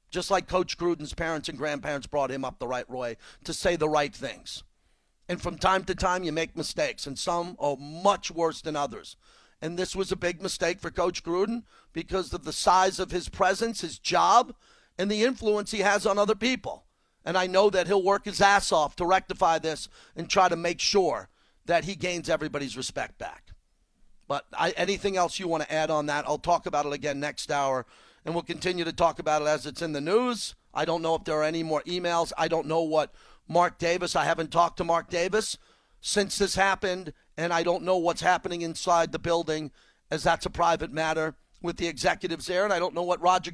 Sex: male